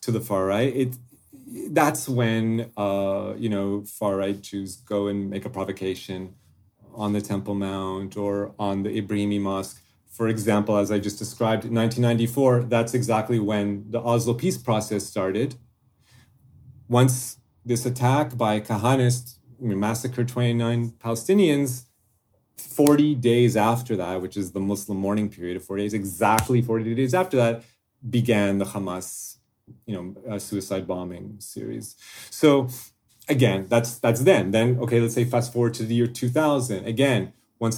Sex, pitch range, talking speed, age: male, 100-125 Hz, 155 wpm, 30-49